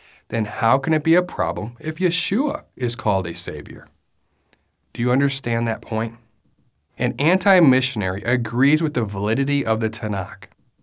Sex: male